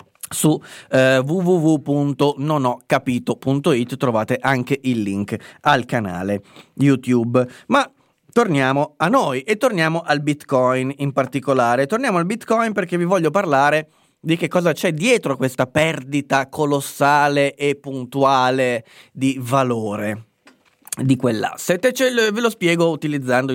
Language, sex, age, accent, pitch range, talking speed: Italian, male, 30-49, native, 125-165 Hz, 115 wpm